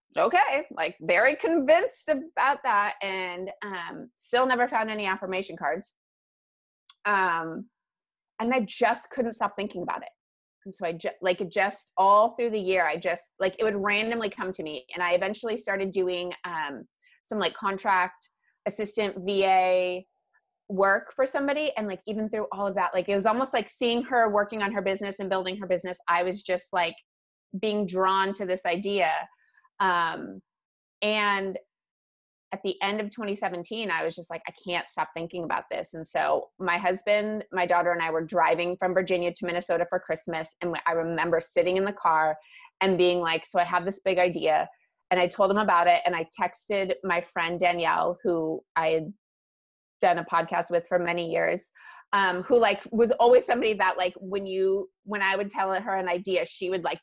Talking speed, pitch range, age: 185 wpm, 175-210 Hz, 20-39